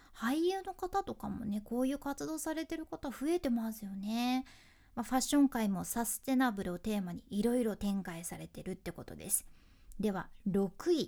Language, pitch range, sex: Japanese, 210-300 Hz, female